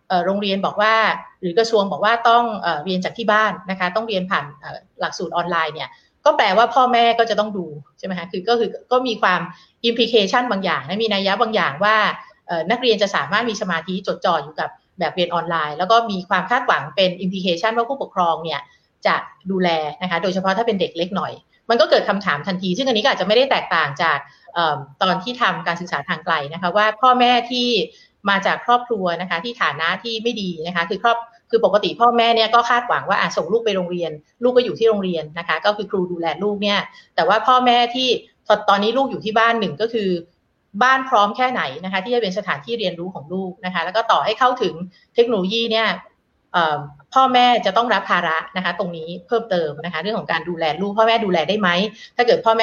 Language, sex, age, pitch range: Thai, female, 30-49, 180-230 Hz